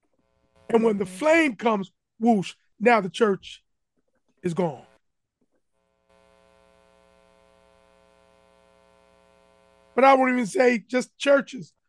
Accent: American